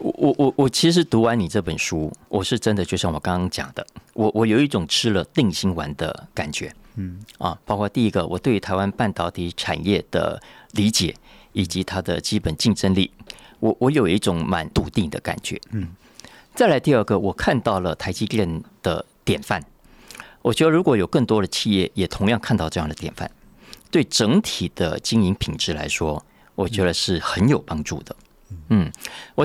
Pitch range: 85-110 Hz